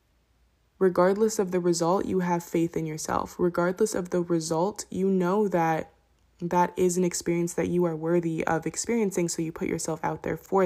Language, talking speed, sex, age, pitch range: English, 185 wpm, female, 20-39, 165-180 Hz